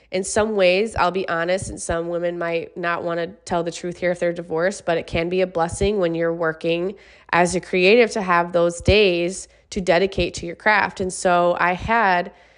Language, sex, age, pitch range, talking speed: English, female, 20-39, 170-200 Hz, 215 wpm